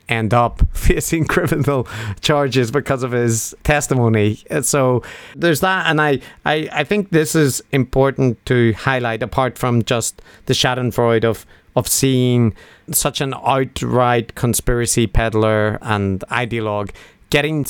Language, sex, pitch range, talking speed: English, male, 115-135 Hz, 130 wpm